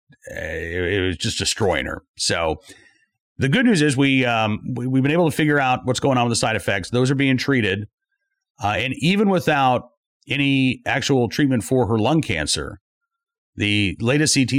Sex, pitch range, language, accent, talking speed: male, 95-135 Hz, English, American, 195 wpm